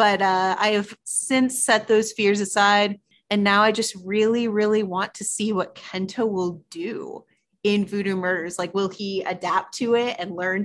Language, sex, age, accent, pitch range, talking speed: English, female, 30-49, American, 185-220 Hz, 185 wpm